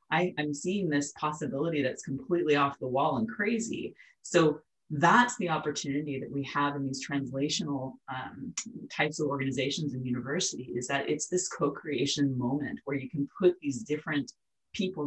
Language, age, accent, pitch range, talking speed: English, 30-49, American, 135-180 Hz, 160 wpm